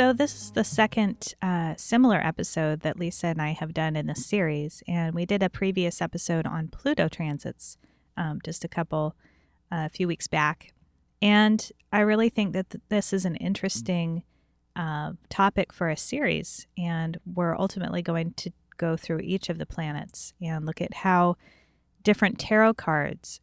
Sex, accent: female, American